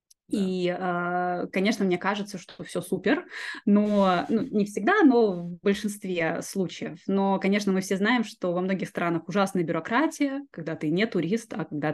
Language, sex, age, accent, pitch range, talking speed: Russian, female, 20-39, native, 170-230 Hz, 160 wpm